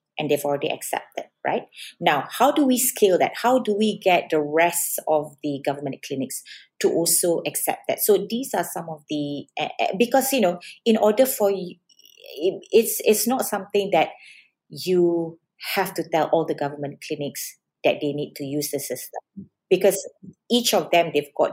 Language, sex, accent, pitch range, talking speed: English, female, Malaysian, 150-215 Hz, 180 wpm